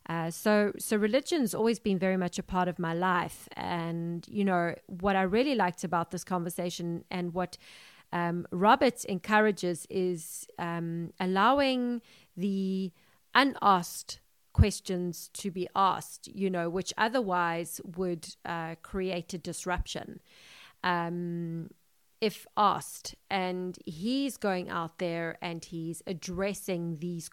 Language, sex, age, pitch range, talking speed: English, female, 30-49, 170-200 Hz, 135 wpm